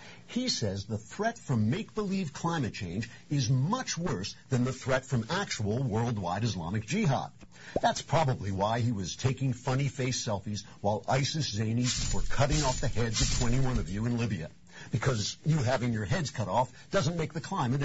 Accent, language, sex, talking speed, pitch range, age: American, English, male, 180 wpm, 110-150 Hz, 60-79